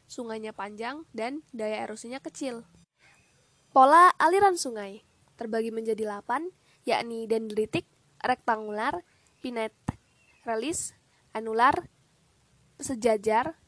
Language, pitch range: Indonesian, 220-265 Hz